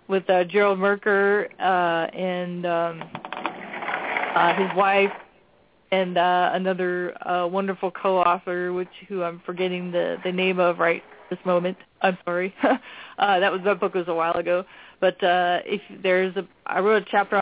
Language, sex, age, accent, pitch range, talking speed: English, female, 20-39, American, 180-205 Hz, 160 wpm